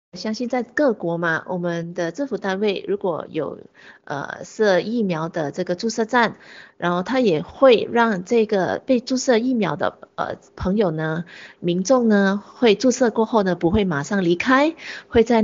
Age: 30-49